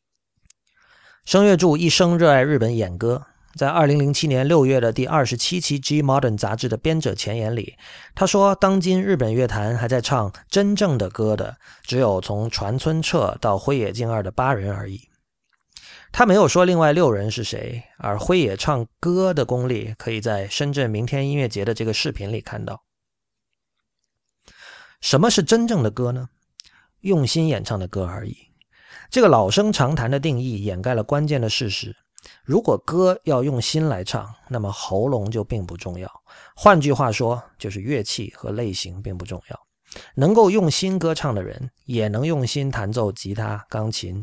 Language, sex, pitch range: Chinese, male, 105-150 Hz